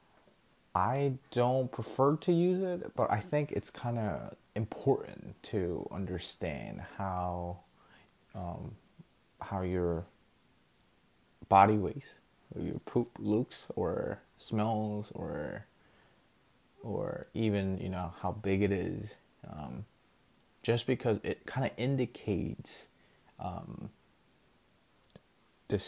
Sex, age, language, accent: male, 20-39, English, American